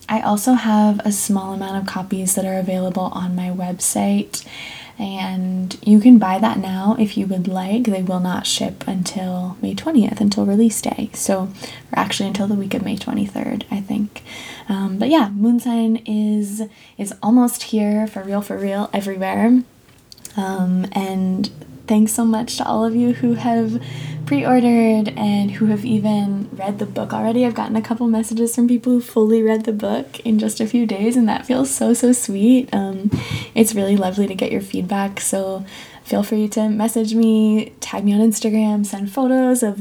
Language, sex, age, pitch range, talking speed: English, female, 10-29, 195-225 Hz, 185 wpm